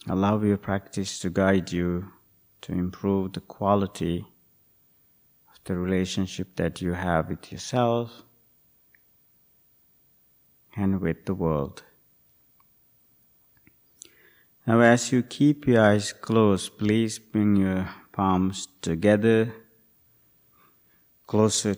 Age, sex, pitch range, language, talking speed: 50-69, male, 95-110 Hz, English, 95 wpm